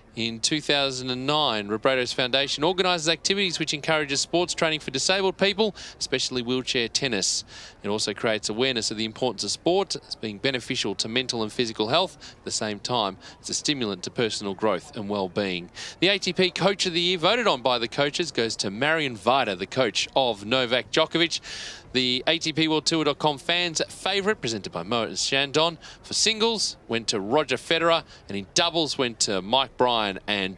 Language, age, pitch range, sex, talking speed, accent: English, 30-49, 115-165 Hz, male, 175 wpm, Australian